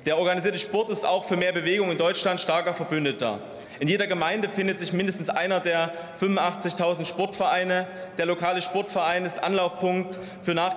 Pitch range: 160-185 Hz